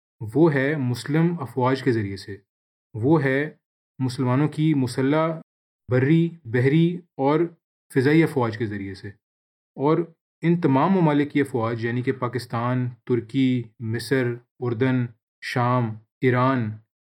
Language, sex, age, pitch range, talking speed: Urdu, male, 30-49, 120-155 Hz, 120 wpm